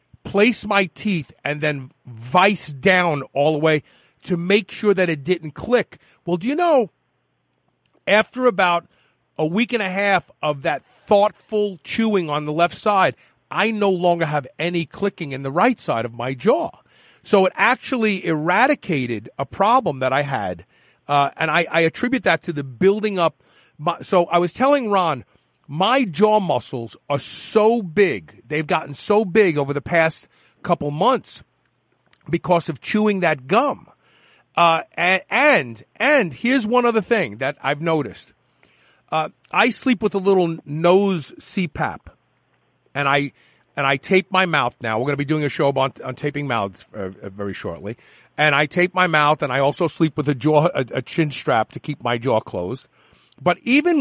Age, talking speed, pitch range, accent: 40-59, 175 wpm, 145-205 Hz, American